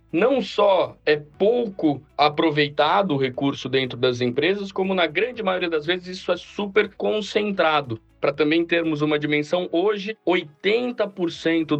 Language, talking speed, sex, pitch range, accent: Portuguese, 135 wpm, male, 145-185 Hz, Brazilian